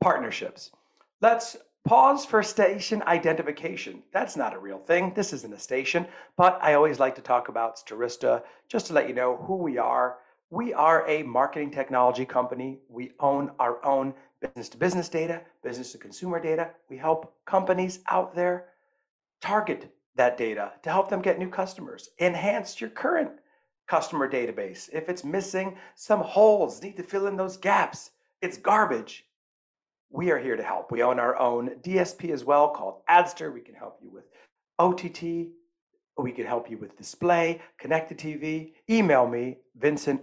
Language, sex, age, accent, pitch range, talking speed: English, male, 40-59, American, 130-185 Hz, 165 wpm